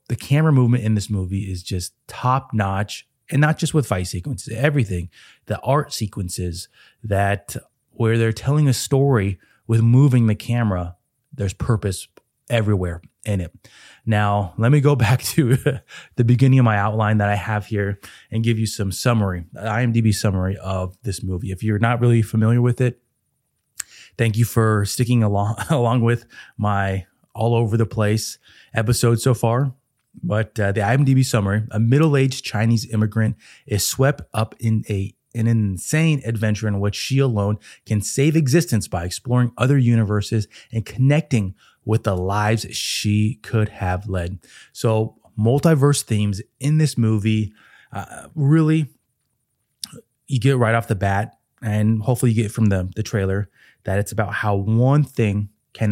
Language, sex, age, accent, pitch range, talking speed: English, male, 20-39, American, 100-125 Hz, 160 wpm